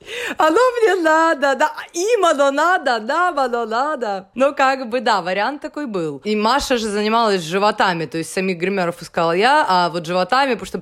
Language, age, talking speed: Russian, 20-39, 180 wpm